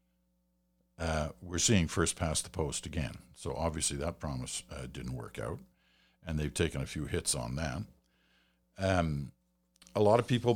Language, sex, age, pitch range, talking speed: English, male, 60-79, 70-100 Hz, 165 wpm